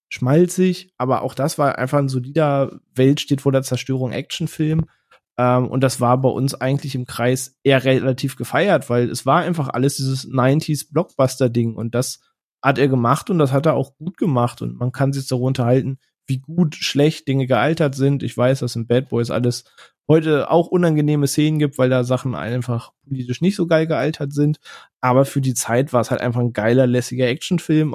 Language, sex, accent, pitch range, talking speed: German, male, German, 125-150 Hz, 200 wpm